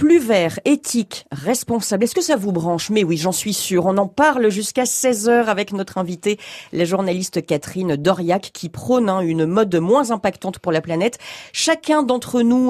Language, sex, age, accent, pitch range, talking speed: French, female, 40-59, French, 185-250 Hz, 190 wpm